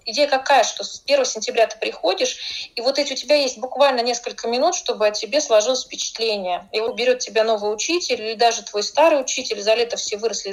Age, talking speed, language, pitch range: 30-49, 210 wpm, Russian, 205-270 Hz